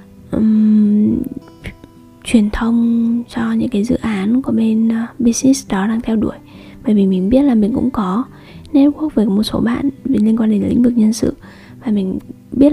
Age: 20-39